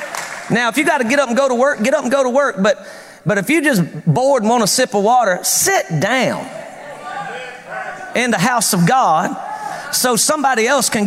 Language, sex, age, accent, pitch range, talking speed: English, male, 40-59, American, 195-260 Hz, 210 wpm